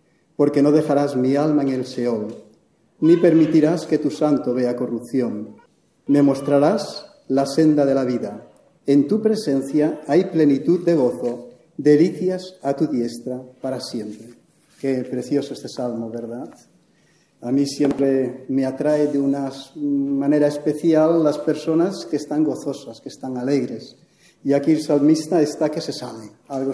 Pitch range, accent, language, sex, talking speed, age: 125-150 Hz, Spanish, English, male, 150 wpm, 40-59